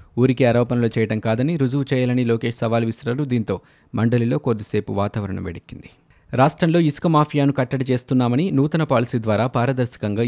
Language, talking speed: Telugu, 135 wpm